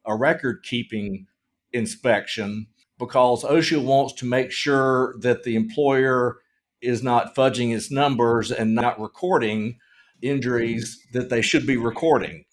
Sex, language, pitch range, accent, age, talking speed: male, English, 115-130 Hz, American, 50-69, 125 wpm